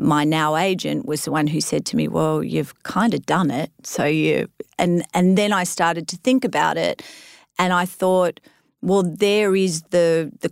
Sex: female